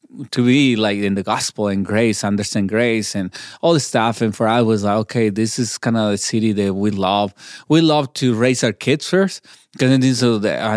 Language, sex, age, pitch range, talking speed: English, male, 20-39, 105-125 Hz, 205 wpm